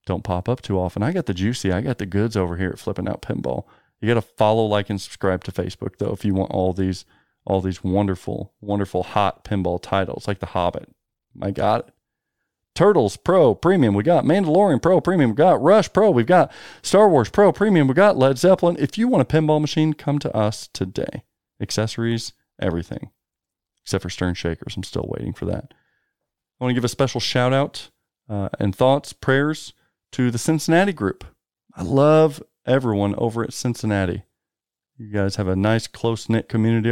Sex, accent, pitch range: male, American, 95-120 Hz